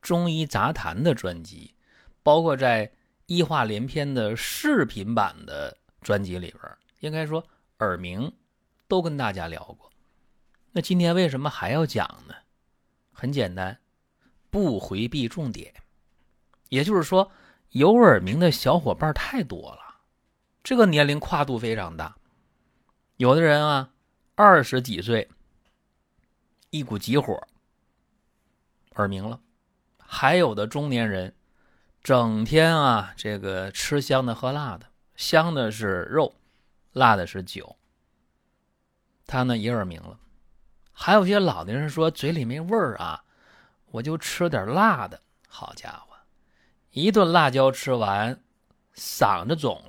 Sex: male